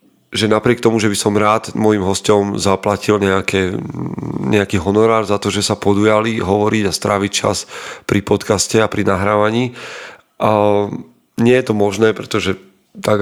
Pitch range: 100-110 Hz